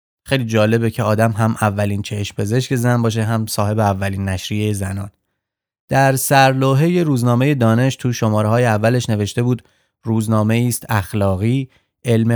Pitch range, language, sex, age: 105-125 Hz, Persian, male, 30-49